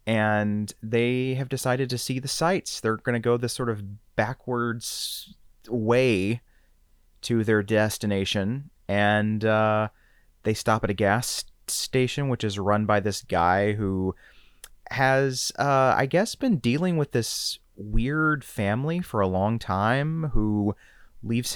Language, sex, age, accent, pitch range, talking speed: English, male, 30-49, American, 105-130 Hz, 140 wpm